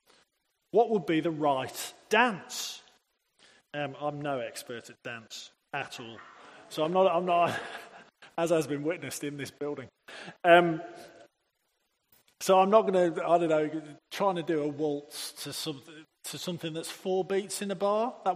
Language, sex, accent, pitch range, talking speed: English, male, British, 155-205 Hz, 165 wpm